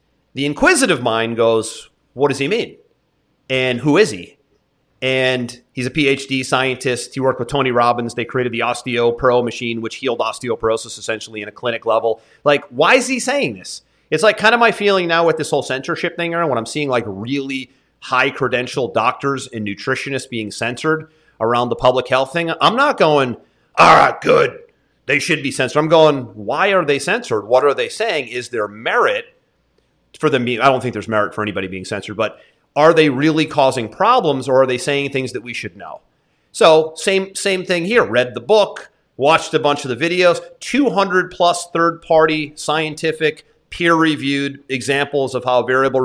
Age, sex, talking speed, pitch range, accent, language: 30-49, male, 185 wpm, 120-160 Hz, American, English